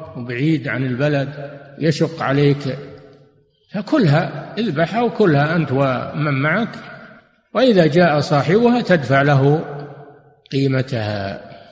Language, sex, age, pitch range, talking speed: Arabic, male, 50-69, 130-160 Hz, 85 wpm